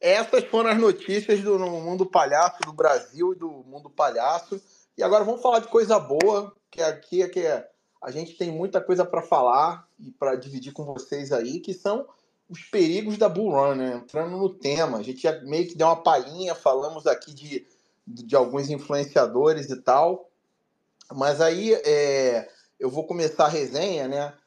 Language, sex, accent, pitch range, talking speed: Portuguese, male, Brazilian, 150-200 Hz, 180 wpm